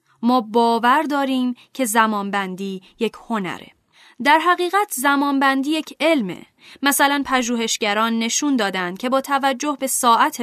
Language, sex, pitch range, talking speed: Persian, female, 220-275 Hz, 120 wpm